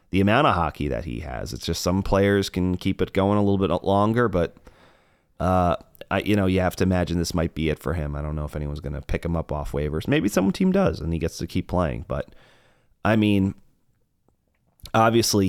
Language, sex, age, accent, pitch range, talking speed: English, male, 30-49, American, 80-100 Hz, 235 wpm